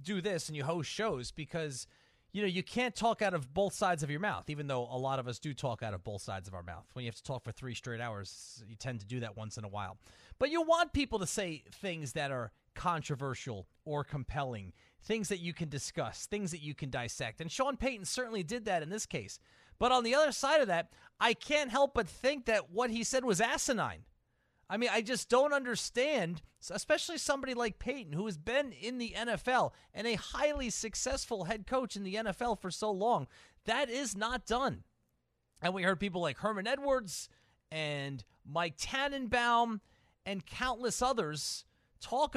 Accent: American